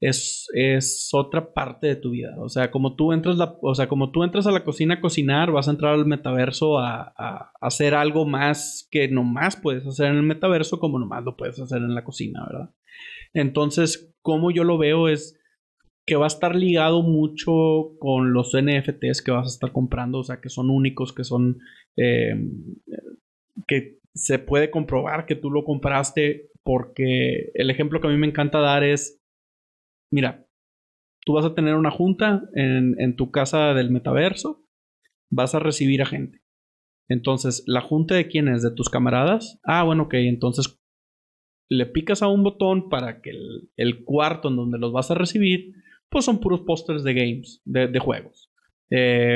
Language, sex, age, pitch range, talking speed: Spanish, male, 30-49, 130-160 Hz, 185 wpm